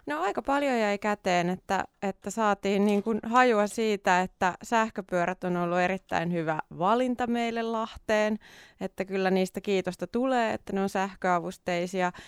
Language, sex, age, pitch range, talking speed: Finnish, female, 20-39, 165-195 Hz, 145 wpm